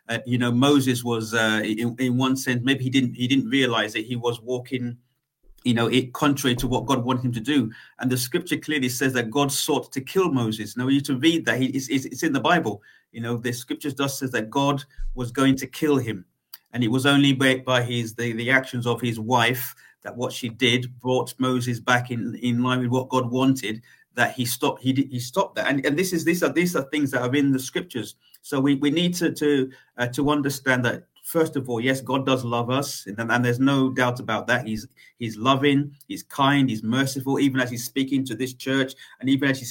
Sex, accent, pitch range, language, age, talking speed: male, British, 120-140 Hz, English, 40-59, 240 wpm